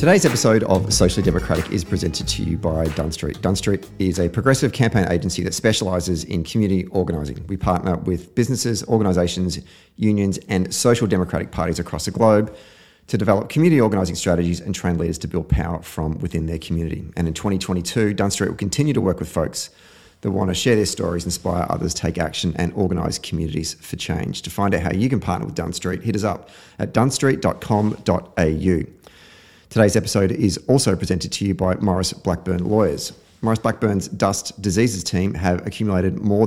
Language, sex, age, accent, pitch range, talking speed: English, male, 30-49, Australian, 85-105 Hz, 180 wpm